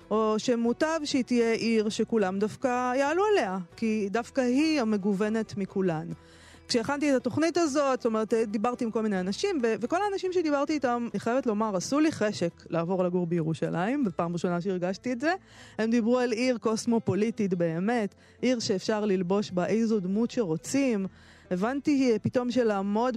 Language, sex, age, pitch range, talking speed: Hebrew, female, 20-39, 185-245 Hz, 155 wpm